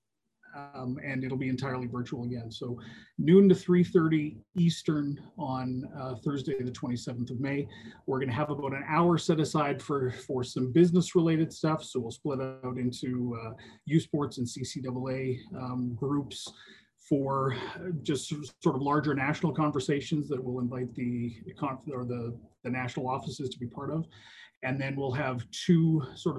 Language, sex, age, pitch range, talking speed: English, male, 30-49, 125-150 Hz, 165 wpm